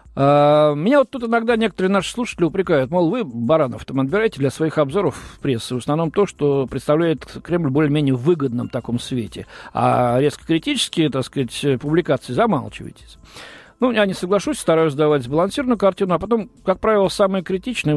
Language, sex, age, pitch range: Russian, male, 50-69, 130-190 Hz